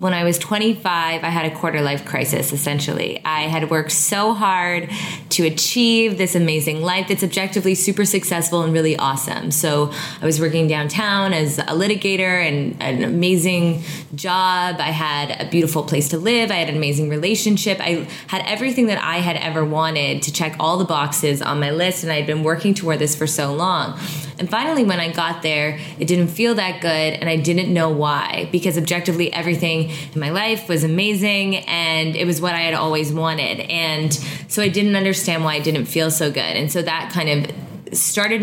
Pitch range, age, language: 155-185 Hz, 20-39, English